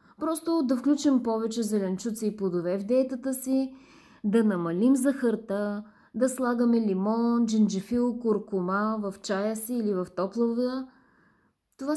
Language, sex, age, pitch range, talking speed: Bulgarian, female, 20-39, 205-260 Hz, 125 wpm